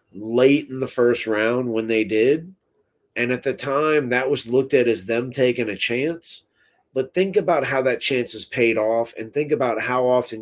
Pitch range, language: 110-130 Hz, English